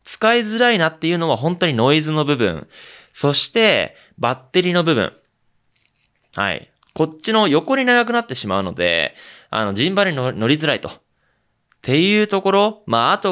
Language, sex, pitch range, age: Japanese, male, 115-175 Hz, 20-39